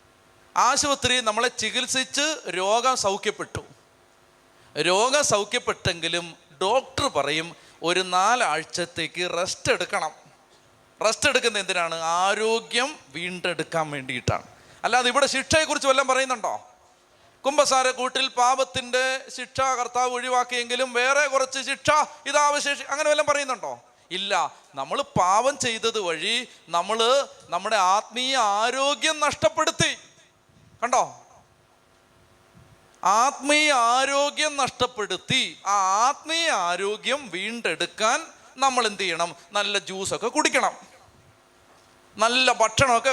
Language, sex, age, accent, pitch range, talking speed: Malayalam, male, 30-49, native, 205-280 Hz, 85 wpm